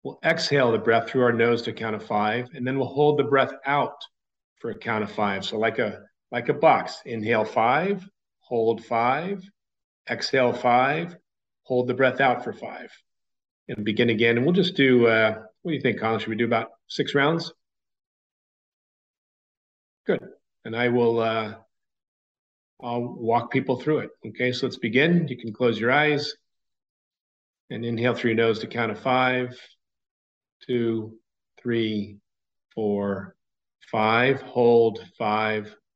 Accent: American